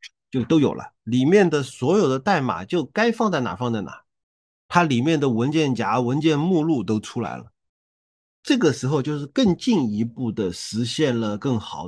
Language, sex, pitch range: Chinese, male, 110-175 Hz